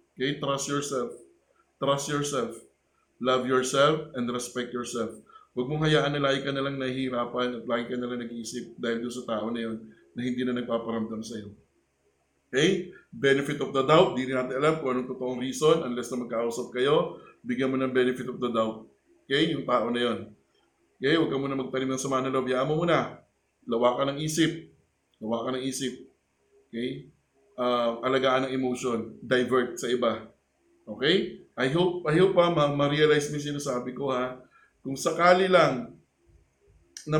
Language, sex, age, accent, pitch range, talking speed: Filipino, male, 20-39, native, 120-145 Hz, 165 wpm